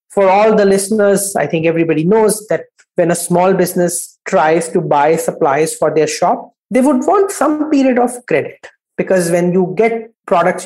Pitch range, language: 165-230 Hz, English